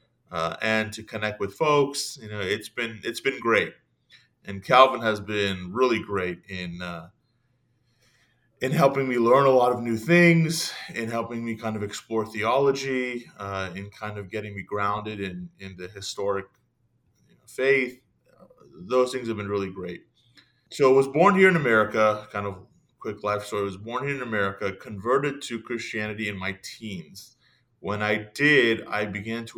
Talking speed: 175 wpm